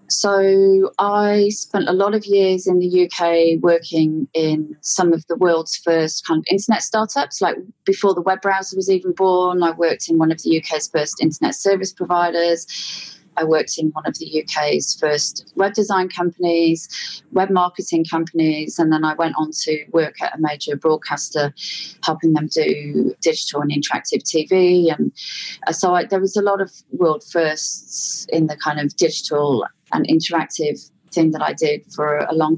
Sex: female